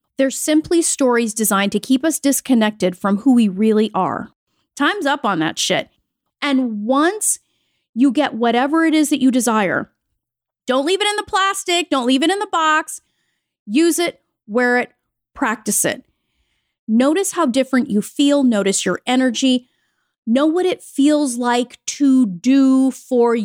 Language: English